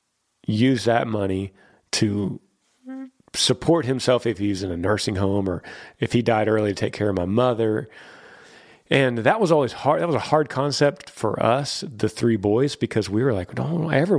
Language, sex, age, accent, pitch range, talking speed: English, male, 40-59, American, 100-140 Hz, 185 wpm